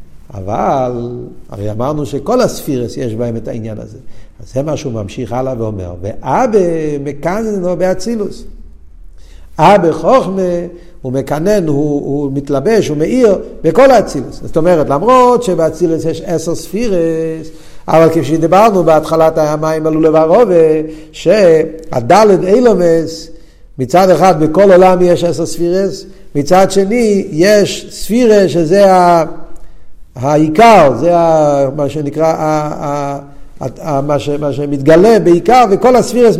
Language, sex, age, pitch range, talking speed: Hebrew, male, 60-79, 150-195 Hz, 120 wpm